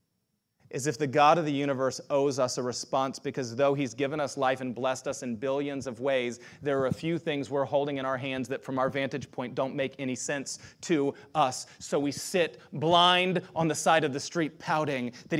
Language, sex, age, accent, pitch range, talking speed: English, male, 30-49, American, 135-225 Hz, 220 wpm